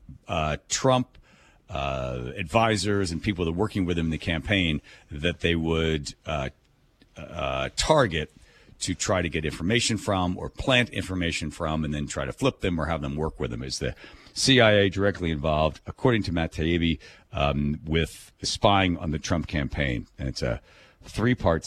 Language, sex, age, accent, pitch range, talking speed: English, male, 50-69, American, 80-110 Hz, 170 wpm